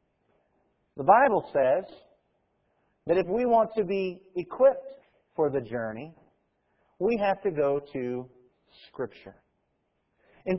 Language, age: English, 50-69